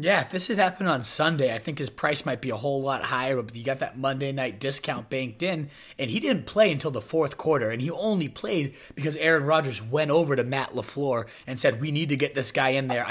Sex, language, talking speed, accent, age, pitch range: male, English, 255 wpm, American, 30-49, 125-150 Hz